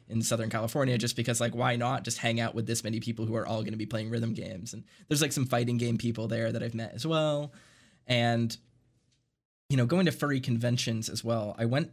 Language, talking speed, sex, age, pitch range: English, 240 wpm, male, 20-39, 115-135 Hz